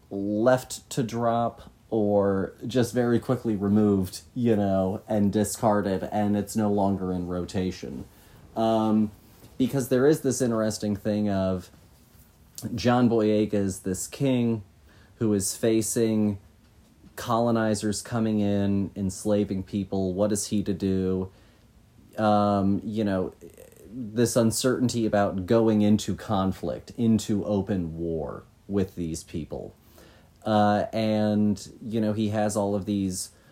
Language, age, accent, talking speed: English, 30-49, American, 120 wpm